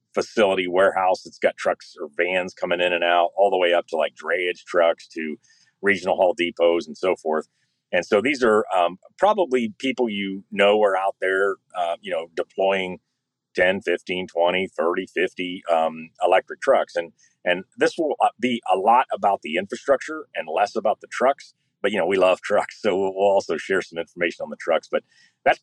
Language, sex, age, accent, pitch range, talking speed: English, male, 40-59, American, 90-115 Hz, 190 wpm